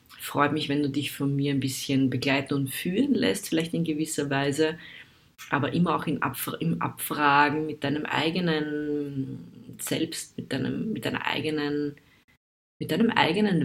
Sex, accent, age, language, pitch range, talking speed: female, German, 20-39, German, 135-155 Hz, 160 wpm